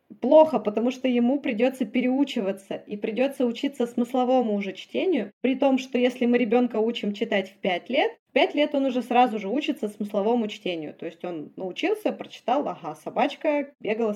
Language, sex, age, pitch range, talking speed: Russian, female, 20-39, 215-265 Hz, 175 wpm